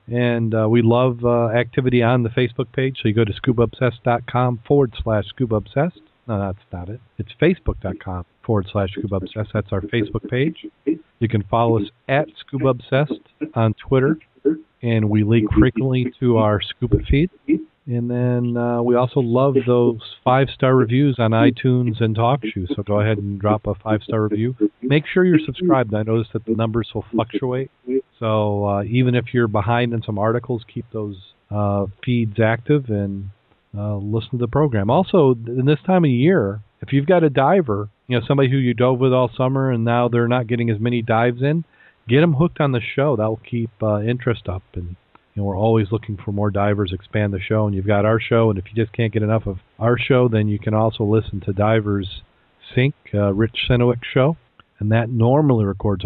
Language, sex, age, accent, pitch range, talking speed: English, male, 40-59, American, 105-125 Hz, 195 wpm